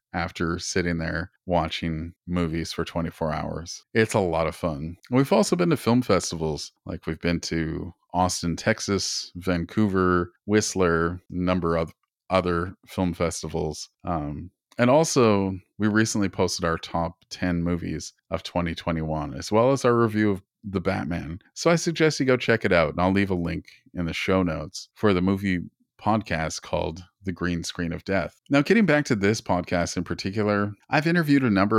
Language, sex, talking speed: English, male, 175 wpm